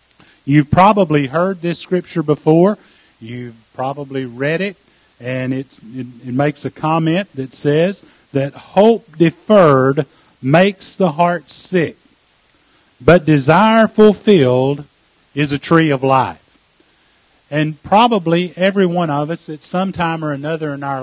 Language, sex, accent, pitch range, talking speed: English, male, American, 145-175 Hz, 130 wpm